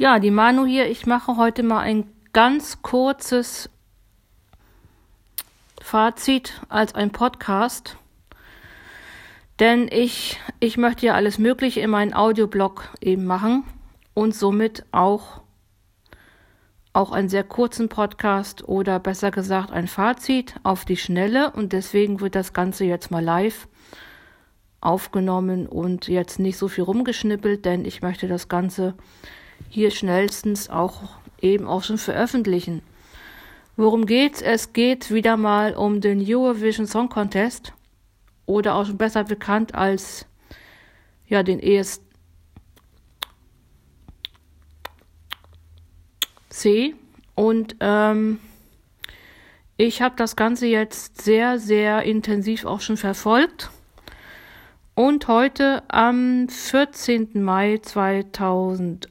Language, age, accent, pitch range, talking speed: German, 50-69, German, 180-230 Hz, 110 wpm